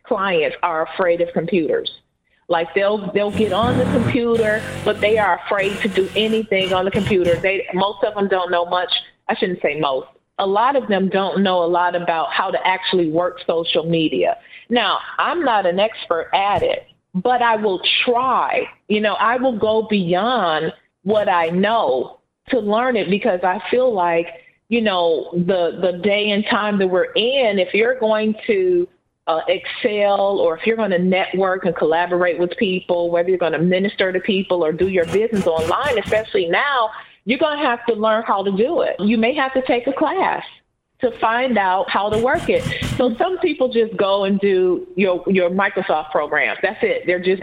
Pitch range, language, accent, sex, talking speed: 180-225 Hz, English, American, female, 195 wpm